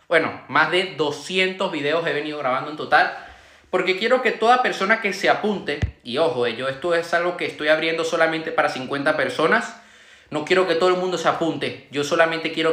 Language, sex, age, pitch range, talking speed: Spanish, male, 20-39, 145-190 Hz, 200 wpm